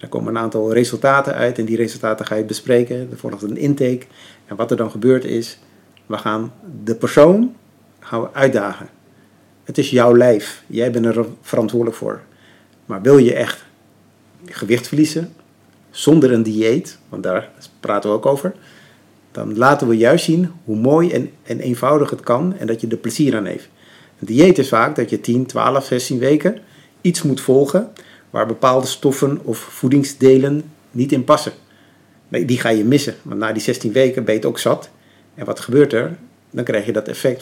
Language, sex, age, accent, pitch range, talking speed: Dutch, male, 50-69, Dutch, 115-145 Hz, 180 wpm